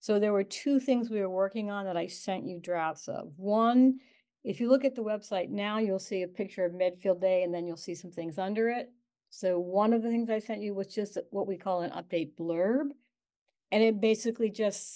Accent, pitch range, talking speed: American, 170-215 Hz, 235 wpm